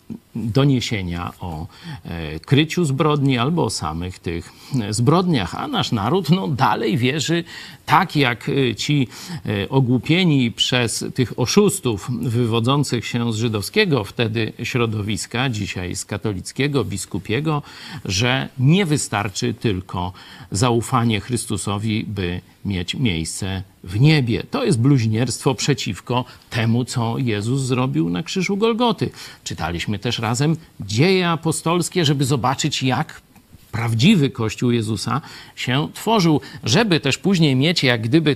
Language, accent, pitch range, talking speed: Polish, native, 115-150 Hz, 115 wpm